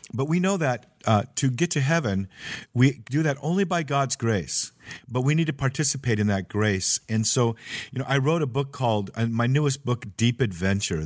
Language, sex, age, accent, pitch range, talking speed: English, male, 50-69, American, 105-135 Hz, 210 wpm